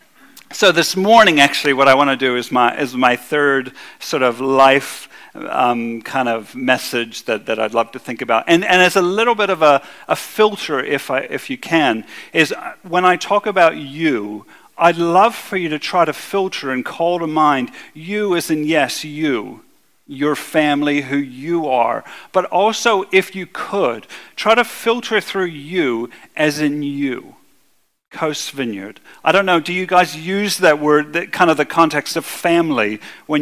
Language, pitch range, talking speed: English, 135-175 Hz, 185 wpm